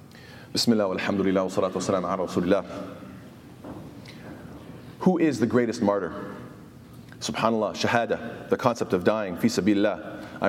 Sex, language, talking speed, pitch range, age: male, English, 95 wpm, 110-140 Hz, 30-49